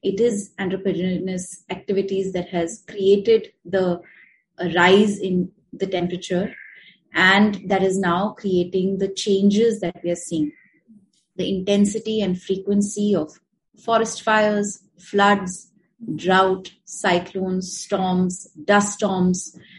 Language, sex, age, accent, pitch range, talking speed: English, female, 30-49, Indian, 185-210 Hz, 110 wpm